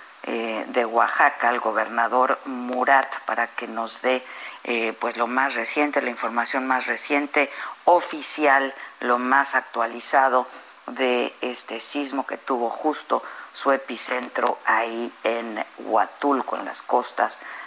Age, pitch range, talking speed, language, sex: 50-69, 115-130 Hz, 120 wpm, Spanish, female